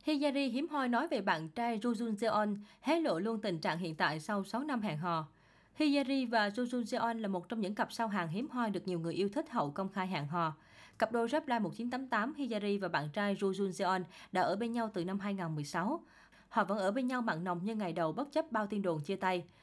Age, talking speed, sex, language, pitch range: 20-39, 240 wpm, female, Vietnamese, 185-235 Hz